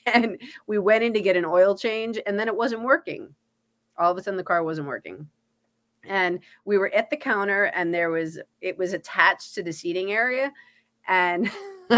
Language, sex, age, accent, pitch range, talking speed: English, female, 30-49, American, 185-285 Hz, 195 wpm